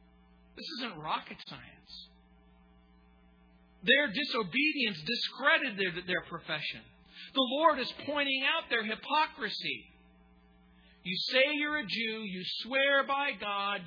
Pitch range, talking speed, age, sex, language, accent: 155-250 Hz, 115 wpm, 50-69, male, English, American